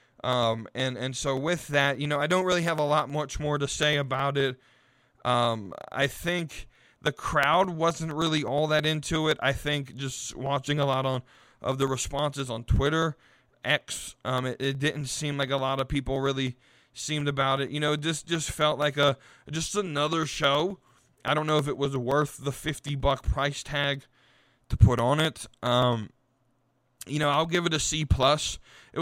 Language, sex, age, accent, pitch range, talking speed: English, male, 20-39, American, 135-155 Hz, 190 wpm